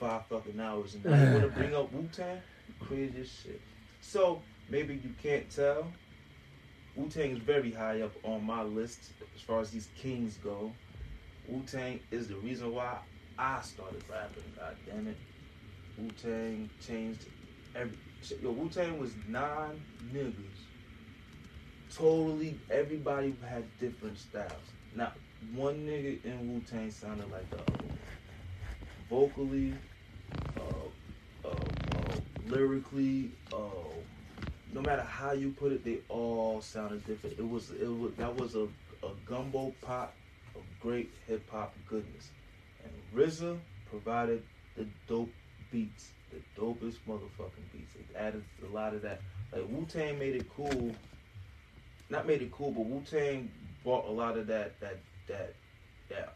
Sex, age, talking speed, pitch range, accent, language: male, 20-39, 140 wpm, 105-130 Hz, American, English